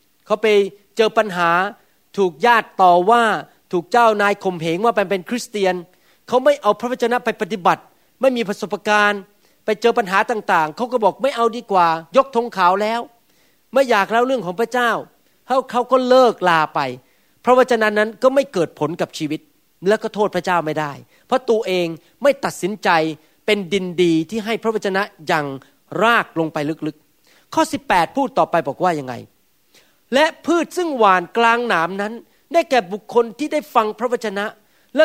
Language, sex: Thai, male